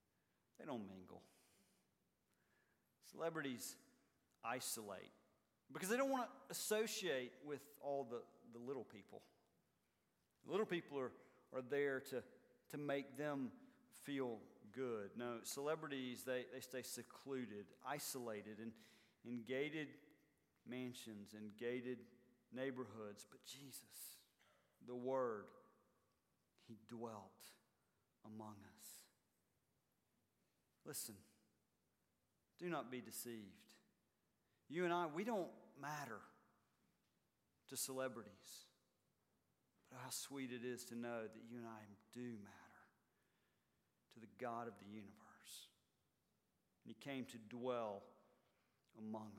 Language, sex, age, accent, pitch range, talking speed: English, male, 50-69, American, 120-185 Hz, 105 wpm